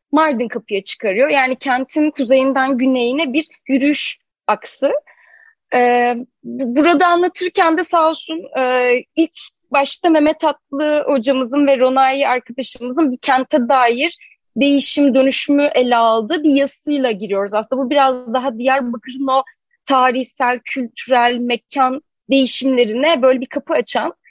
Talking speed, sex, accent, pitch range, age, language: 120 wpm, female, native, 260-305 Hz, 30-49, Turkish